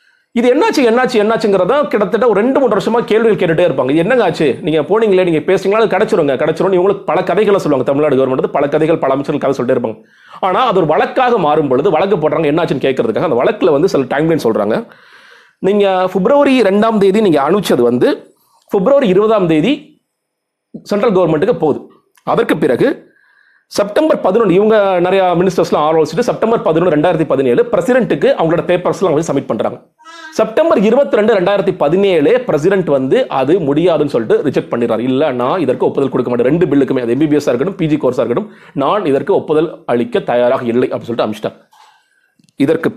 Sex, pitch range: male, 155-225 Hz